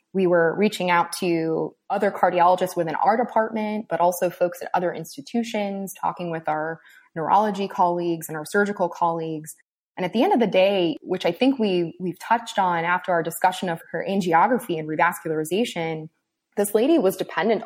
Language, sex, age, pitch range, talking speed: English, female, 20-39, 170-205 Hz, 170 wpm